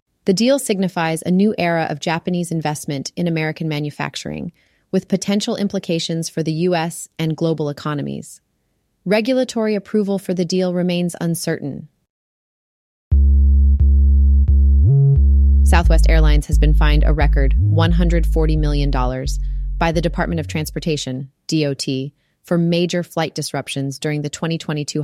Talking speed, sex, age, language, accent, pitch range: 120 wpm, female, 30-49, English, American, 145-175 Hz